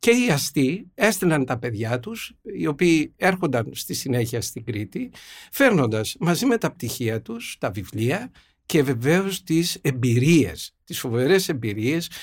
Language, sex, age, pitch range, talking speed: Greek, male, 60-79, 120-175 Hz, 140 wpm